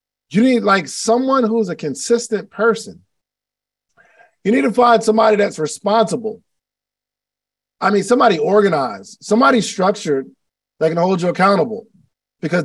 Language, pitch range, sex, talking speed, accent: English, 175-230 Hz, male, 130 wpm, American